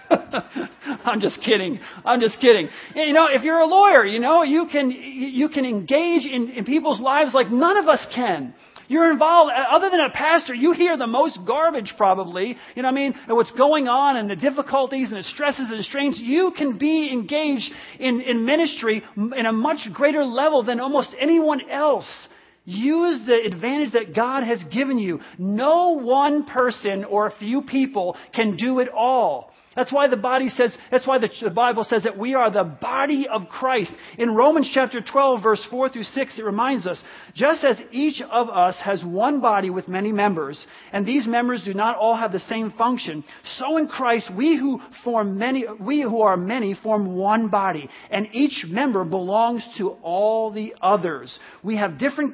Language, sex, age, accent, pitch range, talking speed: English, male, 40-59, American, 220-280 Hz, 190 wpm